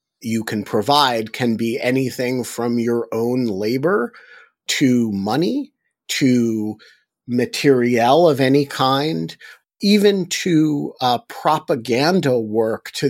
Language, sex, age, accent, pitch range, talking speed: English, male, 50-69, American, 115-140 Hz, 105 wpm